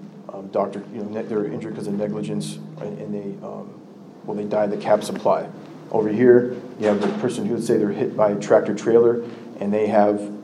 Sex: male